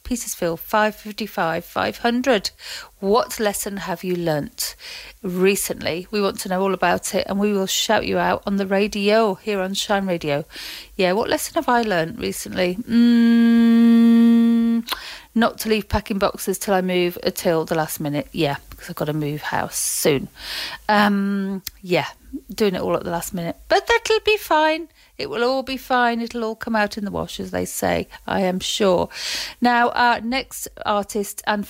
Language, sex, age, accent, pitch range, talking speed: English, female, 40-59, British, 185-235 Hz, 175 wpm